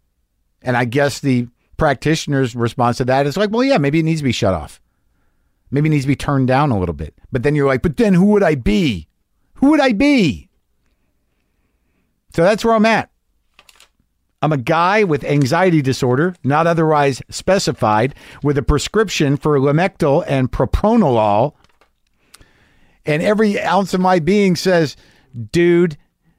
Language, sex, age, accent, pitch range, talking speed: English, male, 50-69, American, 120-190 Hz, 165 wpm